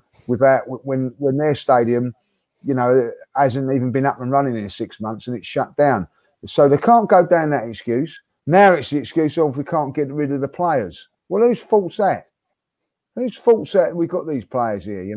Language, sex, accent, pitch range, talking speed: English, male, British, 135-190 Hz, 210 wpm